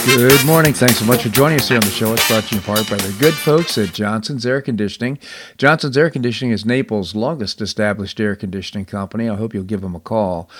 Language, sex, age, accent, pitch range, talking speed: English, male, 50-69, American, 105-130 Hz, 240 wpm